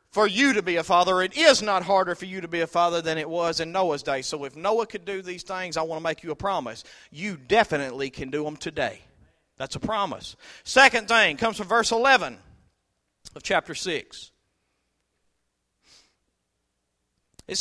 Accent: American